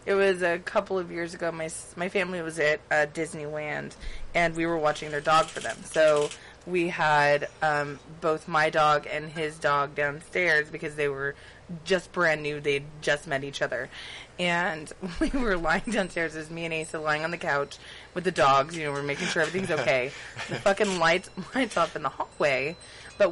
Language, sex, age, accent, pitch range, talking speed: English, female, 20-39, American, 150-185 Hz, 200 wpm